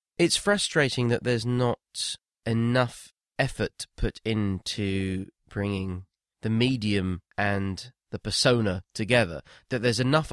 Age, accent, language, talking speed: 20-39, British, English, 110 wpm